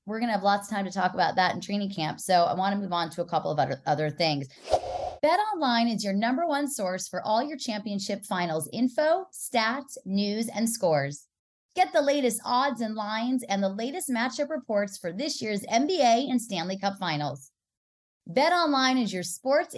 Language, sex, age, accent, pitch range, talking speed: English, female, 30-49, American, 180-265 Hz, 200 wpm